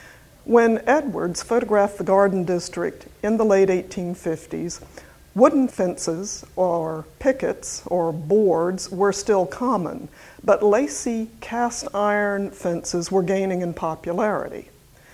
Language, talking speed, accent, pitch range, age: English, 110 wpm, American, 175-220 Hz, 50-69